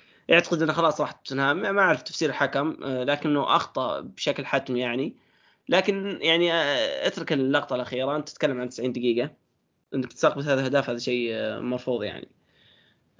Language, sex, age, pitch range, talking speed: Arabic, male, 20-39, 120-140 Hz, 145 wpm